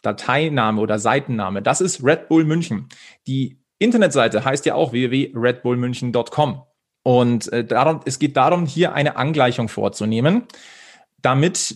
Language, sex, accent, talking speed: German, male, German, 130 wpm